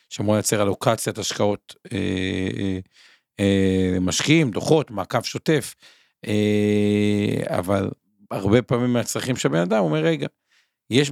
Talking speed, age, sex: 120 wpm, 50-69, male